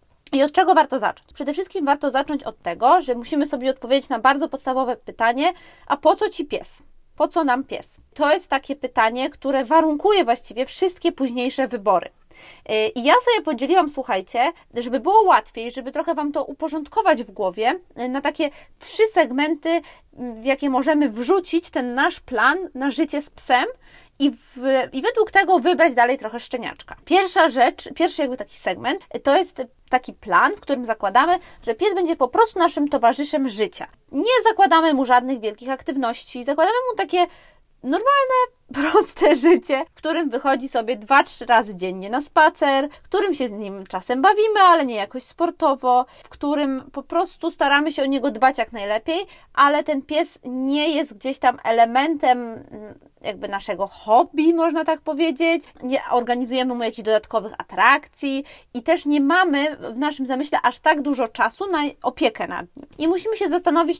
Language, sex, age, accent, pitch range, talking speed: Polish, female, 20-39, native, 255-330 Hz, 170 wpm